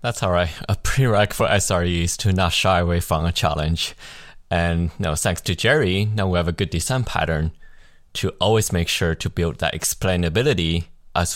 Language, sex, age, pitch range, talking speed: English, male, 20-39, 80-95 Hz, 190 wpm